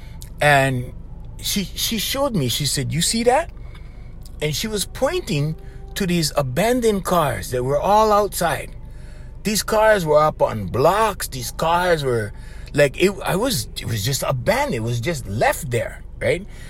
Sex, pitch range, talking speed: male, 140-210 Hz, 160 wpm